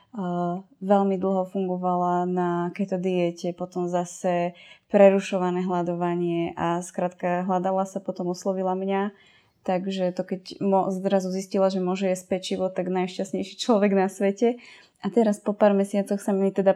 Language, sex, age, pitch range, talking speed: Slovak, female, 20-39, 185-200 Hz, 145 wpm